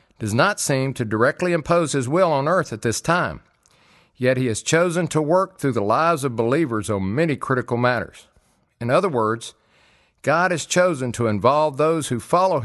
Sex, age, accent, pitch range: male, 50-69, American, 120-165 Hz